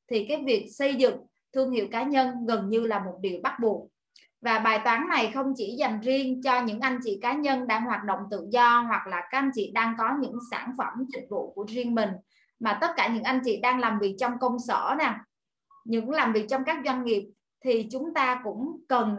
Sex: female